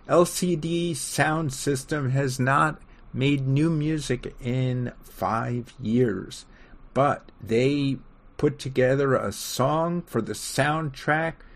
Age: 50-69